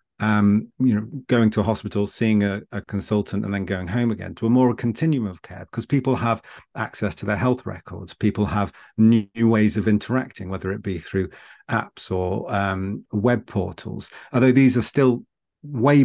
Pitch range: 100-115 Hz